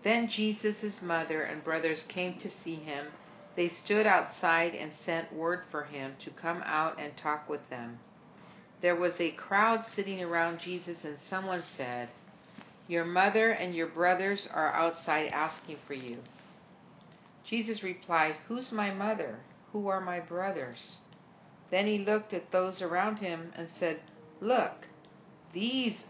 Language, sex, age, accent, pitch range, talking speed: English, female, 50-69, American, 160-195 Hz, 145 wpm